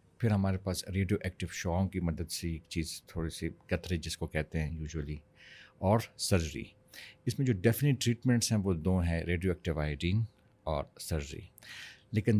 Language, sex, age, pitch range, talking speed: Urdu, male, 50-69, 85-105 Hz, 170 wpm